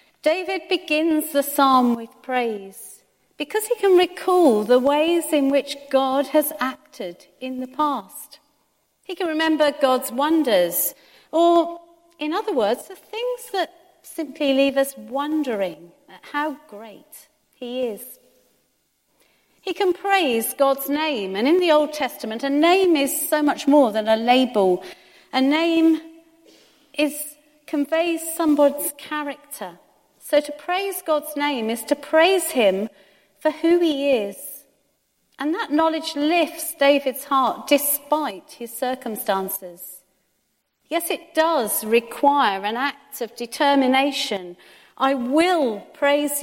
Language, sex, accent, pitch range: English, female, British, 235-315 Hz